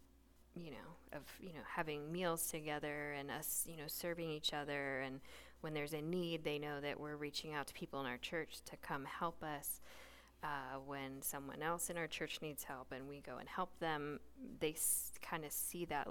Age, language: 10-29, English